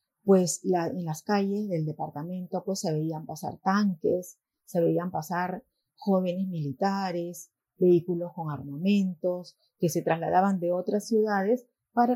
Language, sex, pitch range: Spanish, female, 170-215 Hz